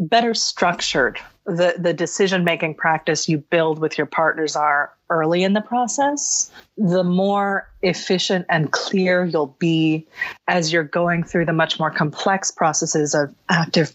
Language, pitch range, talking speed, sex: English, 160-195 Hz, 150 wpm, female